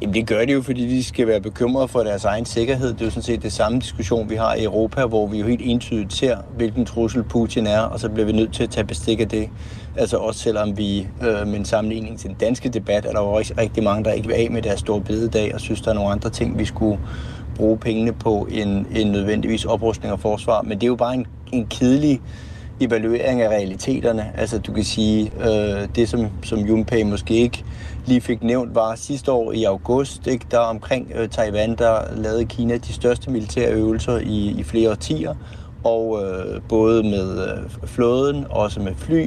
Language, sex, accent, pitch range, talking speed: Danish, male, native, 105-120 Hz, 220 wpm